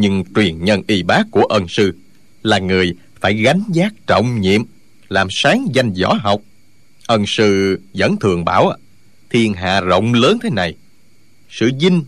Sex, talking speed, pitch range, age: male, 165 wpm, 100-125 Hz, 20-39